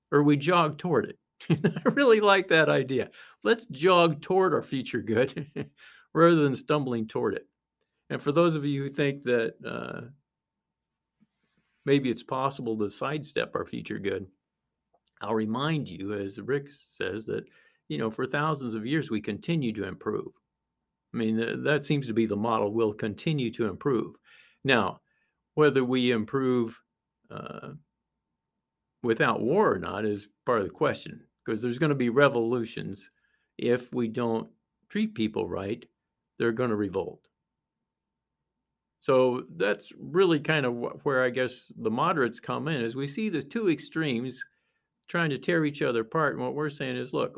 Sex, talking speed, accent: male, 160 wpm, American